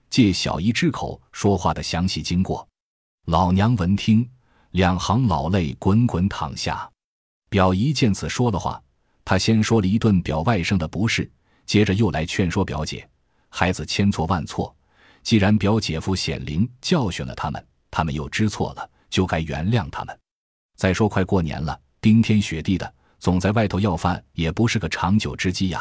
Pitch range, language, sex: 80-105 Hz, Chinese, male